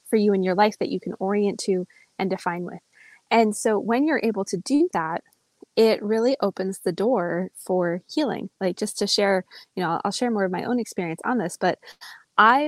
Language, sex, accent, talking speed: English, female, American, 215 wpm